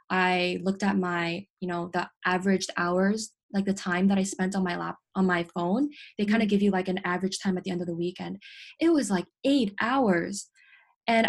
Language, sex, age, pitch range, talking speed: English, female, 10-29, 185-230 Hz, 225 wpm